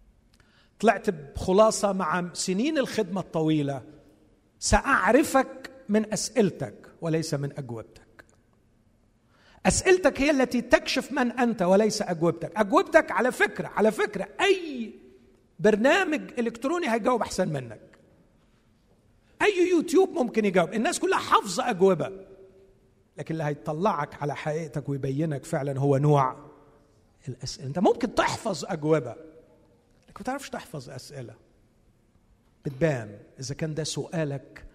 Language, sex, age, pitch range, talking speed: Arabic, male, 50-69, 125-210 Hz, 105 wpm